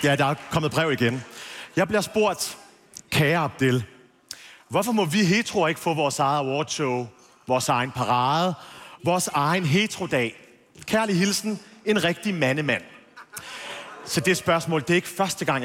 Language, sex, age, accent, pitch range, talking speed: Danish, male, 40-59, native, 135-195 Hz, 150 wpm